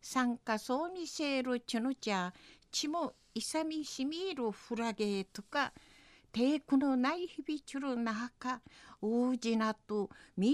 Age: 50-69